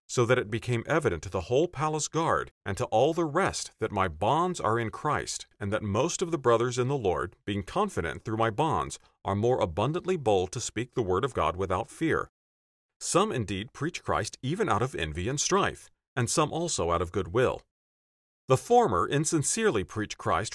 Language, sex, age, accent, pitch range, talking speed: English, male, 40-59, American, 100-155 Hz, 200 wpm